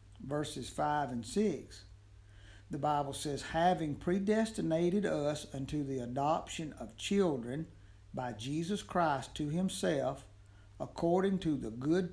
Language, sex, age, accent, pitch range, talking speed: English, male, 60-79, American, 105-155 Hz, 120 wpm